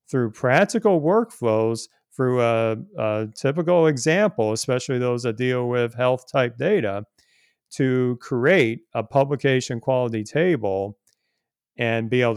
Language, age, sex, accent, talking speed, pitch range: English, 40-59, male, American, 120 wpm, 110-135 Hz